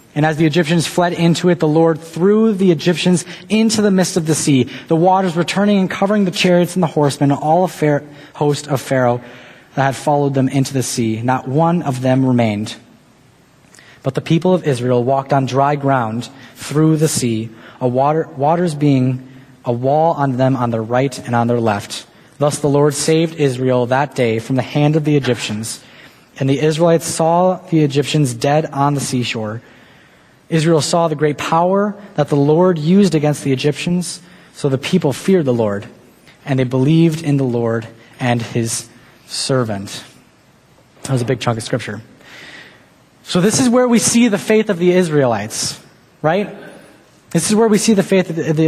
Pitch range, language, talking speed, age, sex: 130-180 Hz, English, 180 wpm, 20-39, male